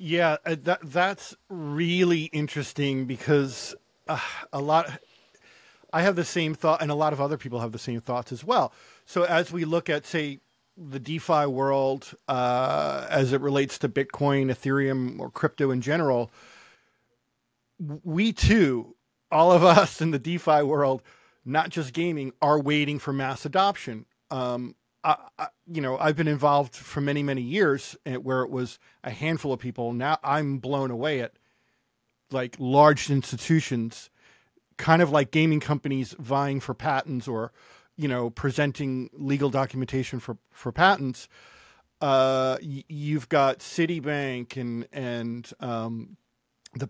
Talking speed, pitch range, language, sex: 145 wpm, 125-155 Hz, English, male